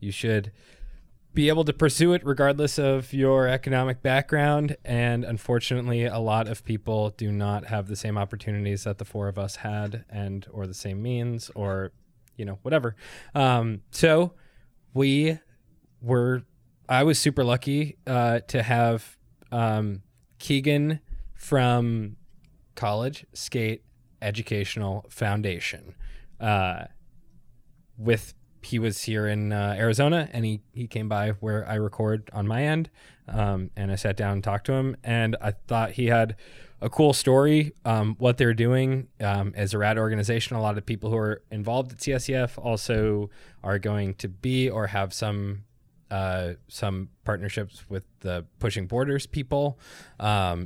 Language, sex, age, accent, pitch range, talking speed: English, male, 20-39, American, 100-130 Hz, 150 wpm